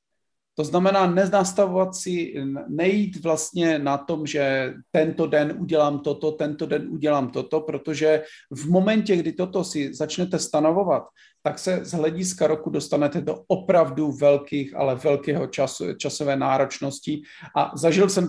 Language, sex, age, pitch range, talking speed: Czech, male, 40-59, 145-180 Hz, 135 wpm